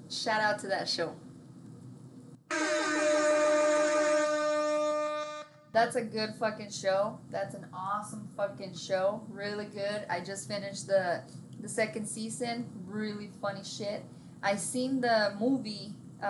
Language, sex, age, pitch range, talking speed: English, female, 20-39, 190-235 Hz, 115 wpm